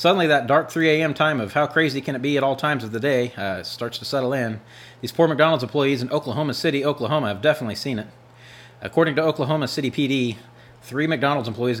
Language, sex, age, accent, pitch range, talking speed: English, male, 30-49, American, 115-145 Hz, 220 wpm